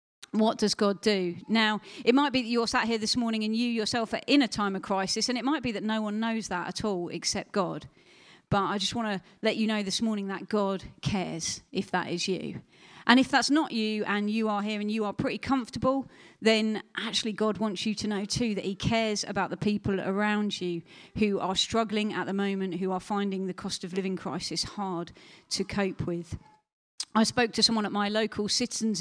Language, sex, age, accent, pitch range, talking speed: English, female, 40-59, British, 195-225 Hz, 225 wpm